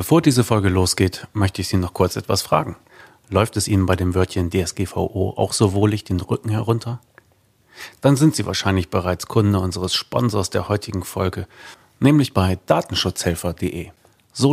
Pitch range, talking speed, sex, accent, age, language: 95-115 Hz, 160 wpm, male, German, 40-59, German